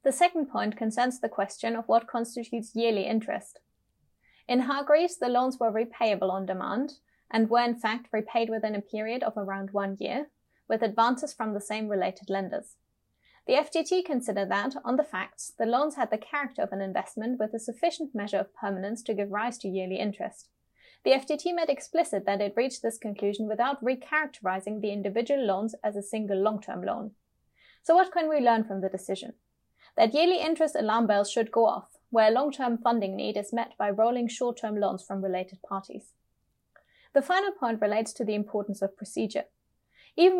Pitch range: 205-270 Hz